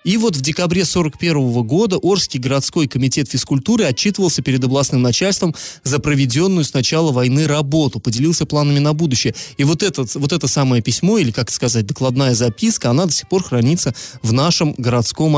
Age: 20-39